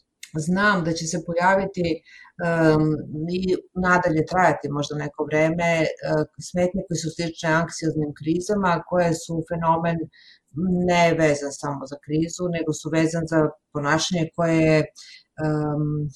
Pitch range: 155-175 Hz